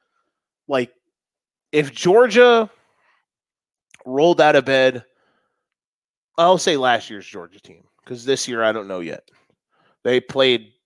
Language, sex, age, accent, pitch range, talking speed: English, male, 20-39, American, 135-205 Hz, 120 wpm